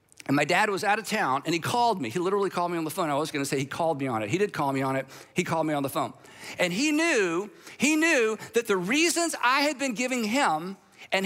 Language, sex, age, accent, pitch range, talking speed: English, male, 50-69, American, 175-250 Hz, 280 wpm